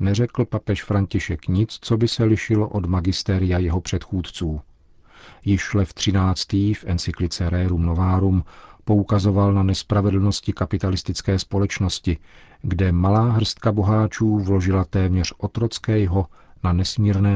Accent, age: native, 40-59